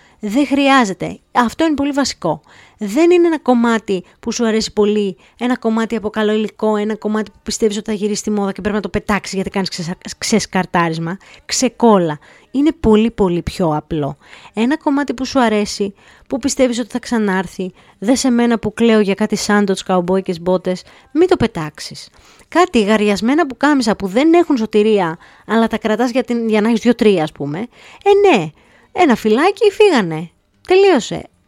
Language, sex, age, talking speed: Greek, female, 20-39, 175 wpm